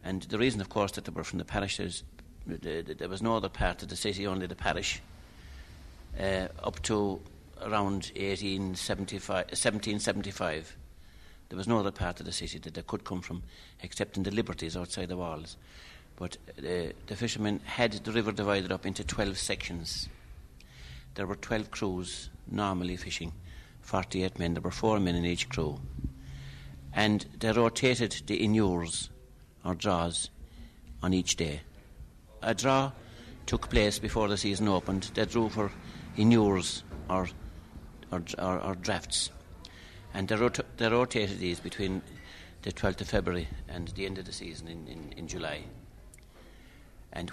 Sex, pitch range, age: male, 85-105 Hz, 60-79